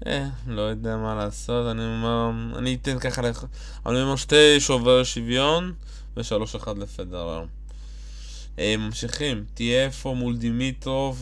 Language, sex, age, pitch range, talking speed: Hebrew, male, 20-39, 105-125 Hz, 135 wpm